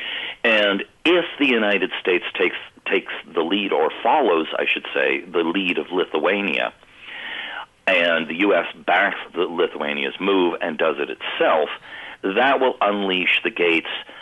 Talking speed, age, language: 145 wpm, 50-69, English